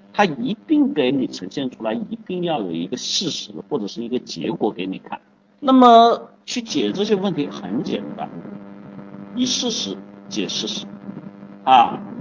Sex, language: male, Chinese